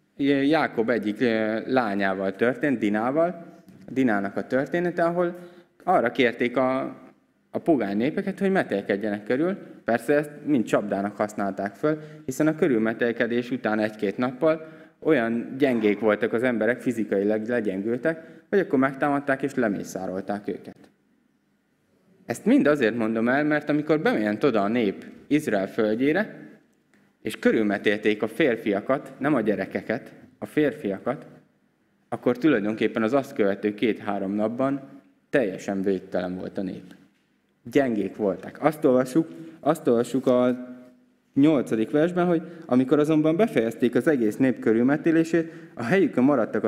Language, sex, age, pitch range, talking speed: Hungarian, male, 20-39, 110-155 Hz, 125 wpm